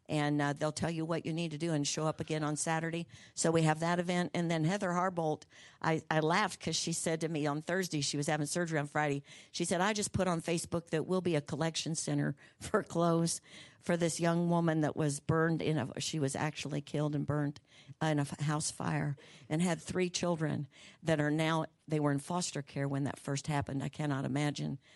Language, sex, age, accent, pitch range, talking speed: English, female, 60-79, American, 150-170 Hz, 225 wpm